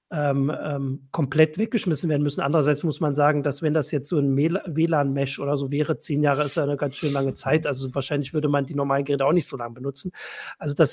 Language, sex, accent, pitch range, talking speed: German, male, German, 140-170 Hz, 230 wpm